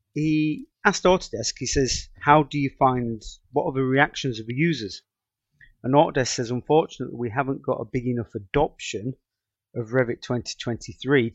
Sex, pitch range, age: male, 115-135 Hz, 30-49